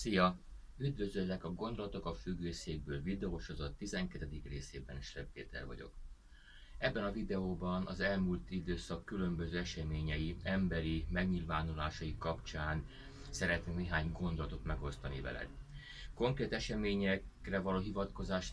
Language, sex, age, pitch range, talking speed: Hungarian, male, 30-49, 80-95 Hz, 110 wpm